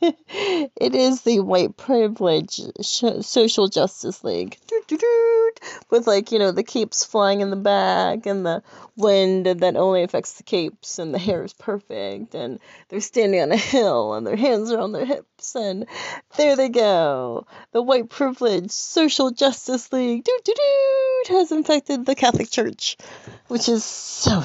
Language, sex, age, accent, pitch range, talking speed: English, female, 30-49, American, 190-270 Hz, 150 wpm